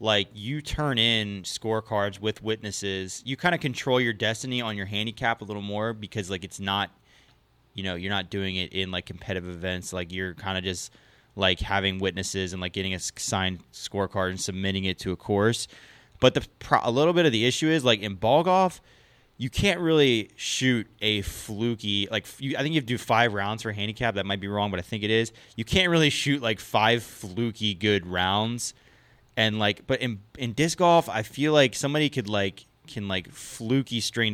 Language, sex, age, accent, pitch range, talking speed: English, male, 20-39, American, 100-125 Hz, 210 wpm